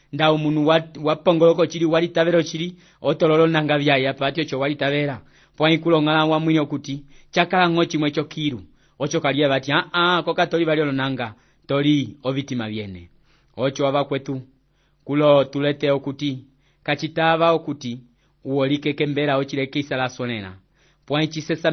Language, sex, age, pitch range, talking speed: English, male, 30-49, 130-160 Hz, 140 wpm